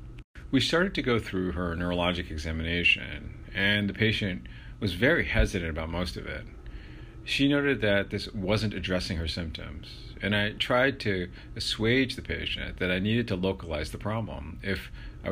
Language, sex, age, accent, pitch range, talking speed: English, male, 40-59, American, 85-110 Hz, 165 wpm